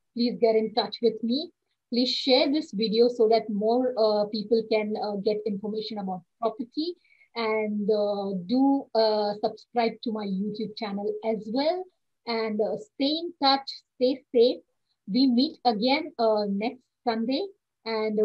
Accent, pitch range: Indian, 220-255 Hz